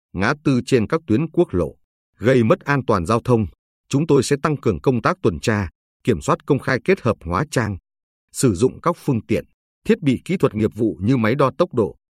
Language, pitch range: Vietnamese, 105-145 Hz